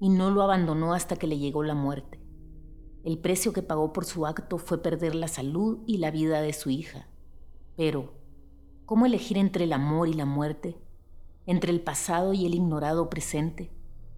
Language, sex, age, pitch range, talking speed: Spanish, female, 30-49, 140-180 Hz, 180 wpm